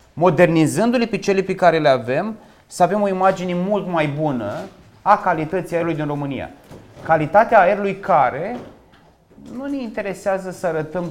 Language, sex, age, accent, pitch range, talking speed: Romanian, male, 30-49, native, 150-190 Hz, 145 wpm